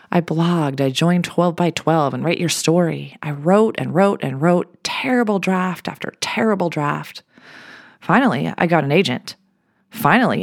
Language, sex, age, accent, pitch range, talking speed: English, female, 30-49, American, 155-220 Hz, 160 wpm